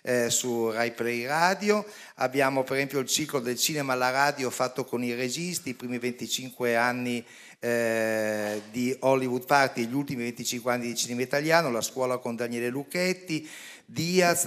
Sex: male